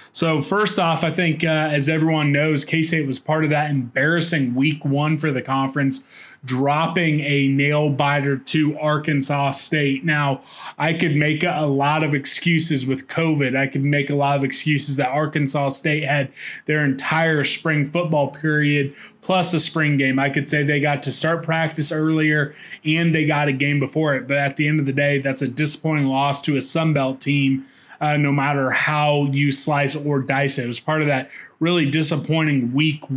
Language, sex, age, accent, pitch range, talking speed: English, male, 20-39, American, 140-155 Hz, 190 wpm